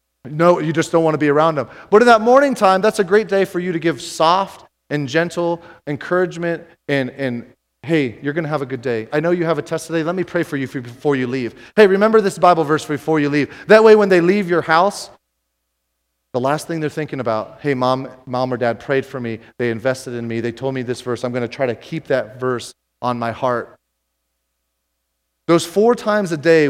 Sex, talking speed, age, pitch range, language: male, 235 wpm, 30-49, 130-170 Hz, English